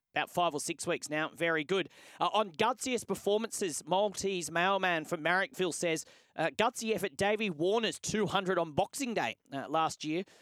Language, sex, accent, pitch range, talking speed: English, male, Australian, 145-185 Hz, 165 wpm